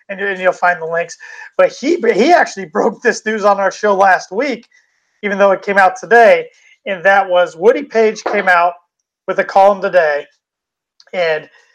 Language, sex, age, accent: English, male, 30-49, American